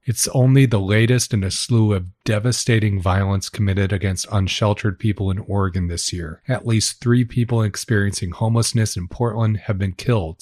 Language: English